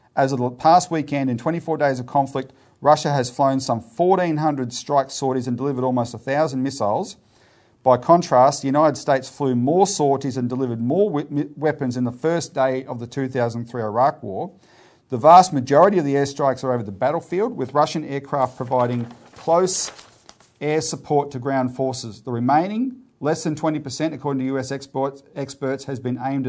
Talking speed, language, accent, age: 170 wpm, English, Australian, 40-59